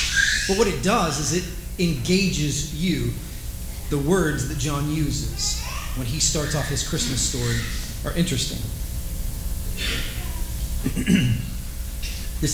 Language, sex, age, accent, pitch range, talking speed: English, male, 40-59, American, 115-170 Hz, 110 wpm